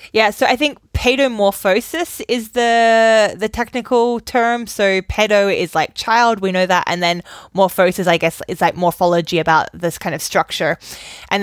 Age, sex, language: 10-29, female, English